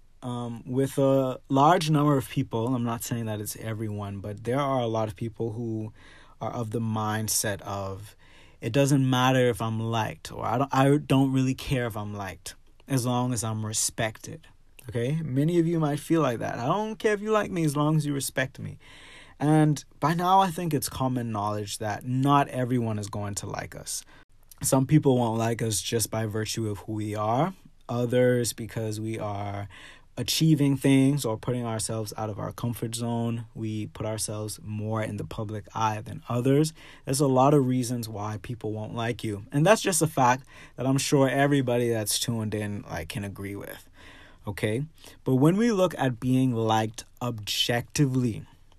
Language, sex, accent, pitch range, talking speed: English, male, American, 110-140 Hz, 190 wpm